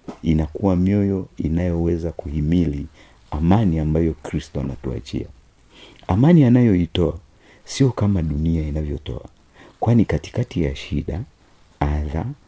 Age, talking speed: 50-69, 90 wpm